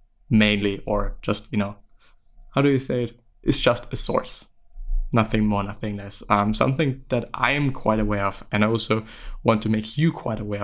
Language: English